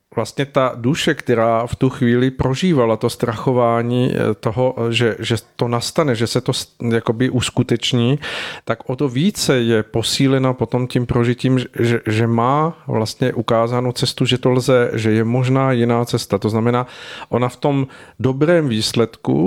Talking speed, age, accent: 155 wpm, 40-59, native